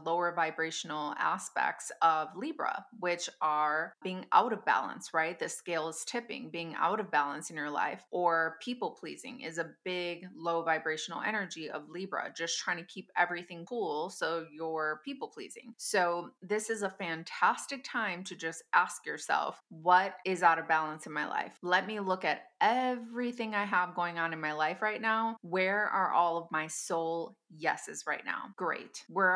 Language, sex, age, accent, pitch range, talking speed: English, female, 20-39, American, 160-195 Hz, 180 wpm